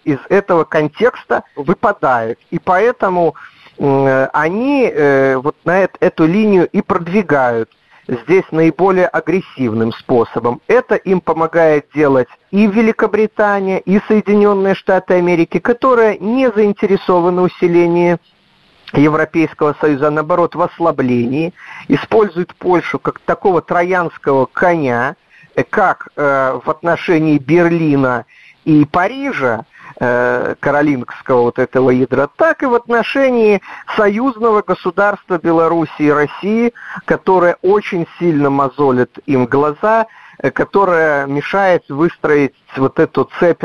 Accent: native